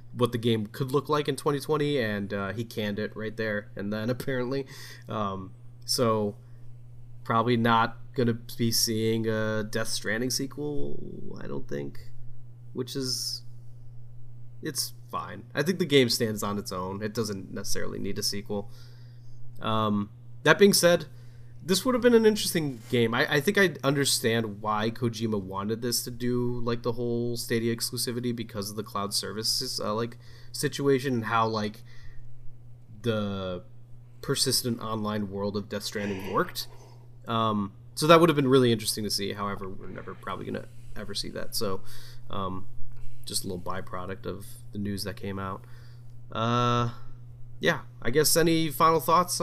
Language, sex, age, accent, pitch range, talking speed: English, male, 20-39, American, 110-125 Hz, 165 wpm